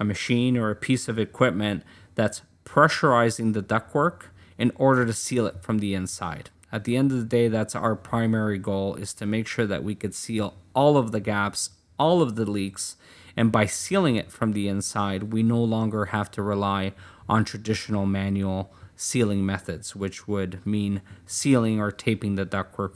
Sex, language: male, English